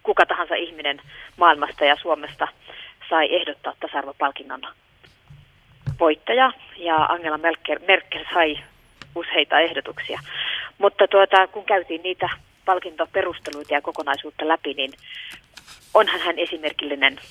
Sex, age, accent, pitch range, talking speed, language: female, 30-49, native, 150-180 Hz, 105 wpm, Finnish